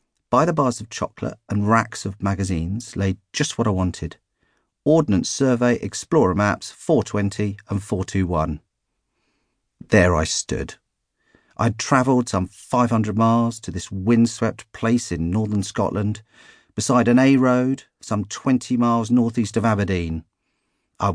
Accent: British